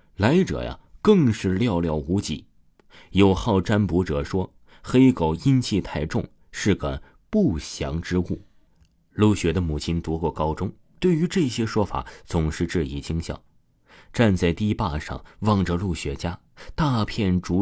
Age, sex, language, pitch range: 30-49, male, Chinese, 80-110 Hz